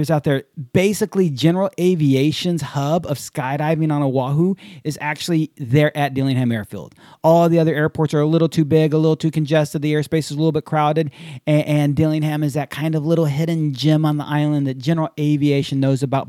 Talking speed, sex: 195 wpm, male